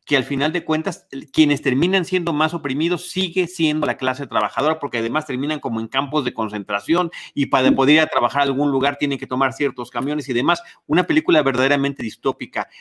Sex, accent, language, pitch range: male, Mexican, Spanish, 130-170 Hz